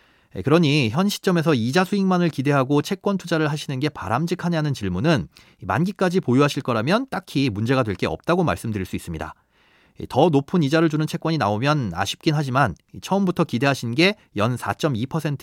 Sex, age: male, 30-49